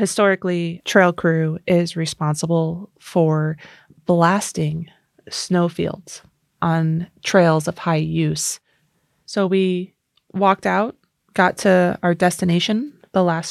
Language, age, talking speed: English, 20-39, 100 wpm